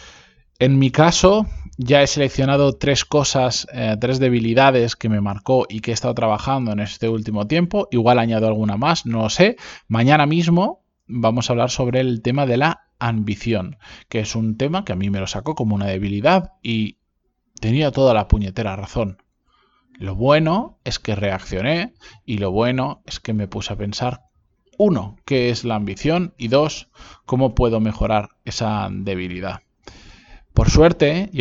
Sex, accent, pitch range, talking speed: male, Spanish, 105-140 Hz, 170 wpm